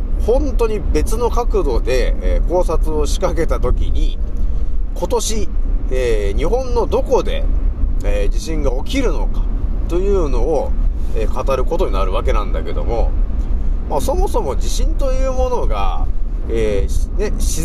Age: 30-49